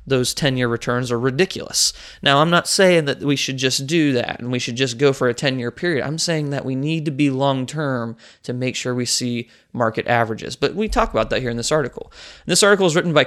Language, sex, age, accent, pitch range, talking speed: English, male, 20-39, American, 120-150 Hz, 240 wpm